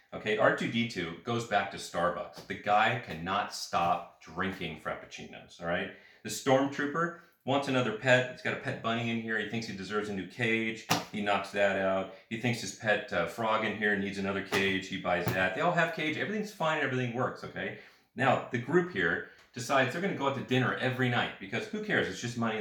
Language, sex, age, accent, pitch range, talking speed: English, male, 40-59, American, 90-125 Hz, 210 wpm